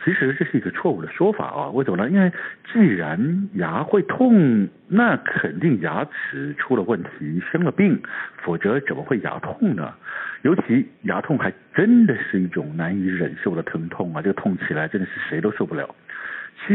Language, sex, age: Chinese, male, 60-79